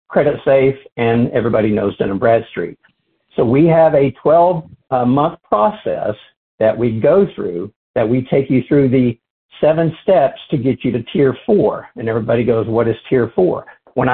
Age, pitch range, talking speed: 60-79, 115-150 Hz, 175 wpm